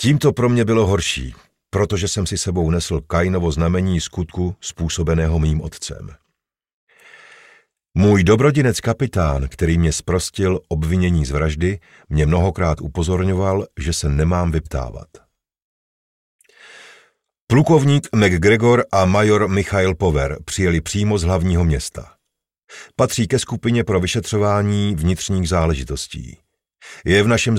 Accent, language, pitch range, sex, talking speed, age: native, Czech, 80-105 Hz, male, 115 wpm, 50-69